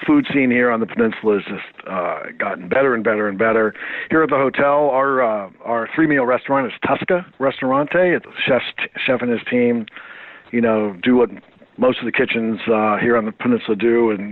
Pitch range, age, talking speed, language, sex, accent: 110-140 Hz, 50-69, 200 wpm, English, male, American